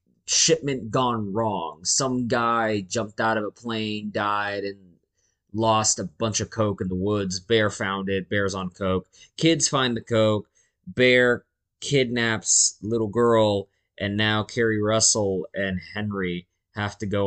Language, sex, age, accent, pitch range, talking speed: English, male, 20-39, American, 95-110 Hz, 150 wpm